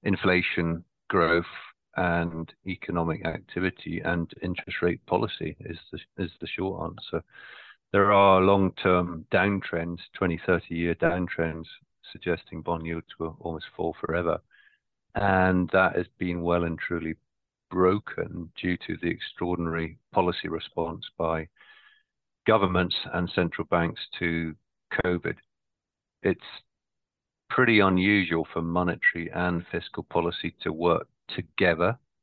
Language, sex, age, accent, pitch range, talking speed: English, male, 40-59, British, 80-90 Hz, 115 wpm